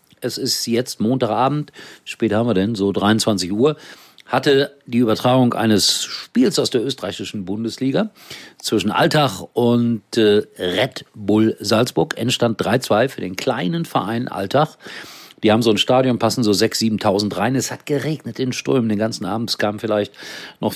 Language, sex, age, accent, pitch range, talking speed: German, male, 50-69, German, 105-135 Hz, 160 wpm